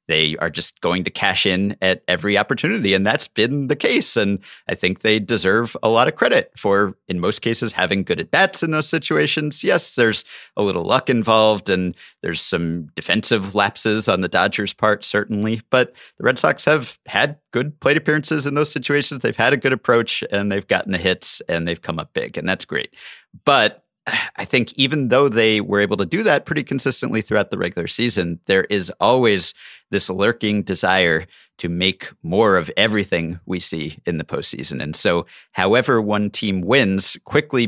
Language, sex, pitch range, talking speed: English, male, 95-120 Hz, 190 wpm